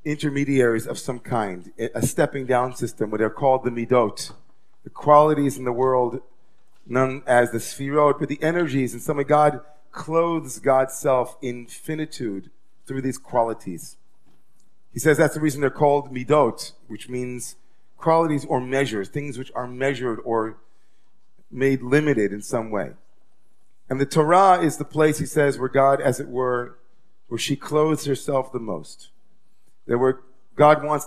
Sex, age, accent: male, 40-59, American